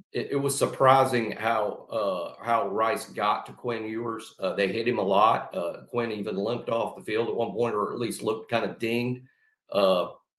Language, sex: English, male